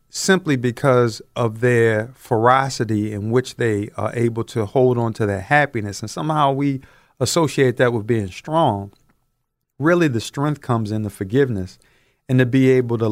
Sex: male